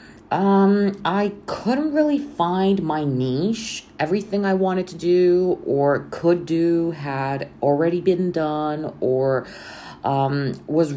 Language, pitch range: English, 135-170 Hz